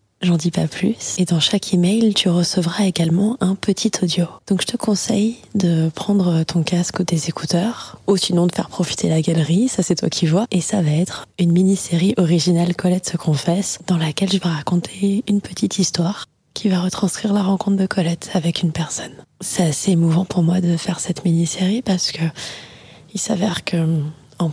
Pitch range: 165-190 Hz